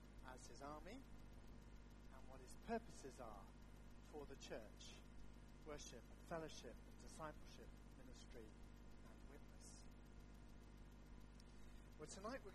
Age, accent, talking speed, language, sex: 40-59, British, 95 wpm, English, male